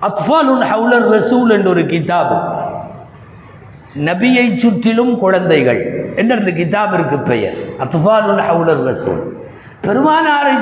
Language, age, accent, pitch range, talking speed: Tamil, 60-79, native, 170-245 Hz, 95 wpm